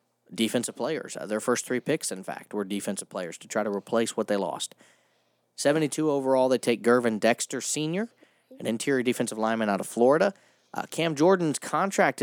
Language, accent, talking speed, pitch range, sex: English, American, 180 wpm, 110-150 Hz, male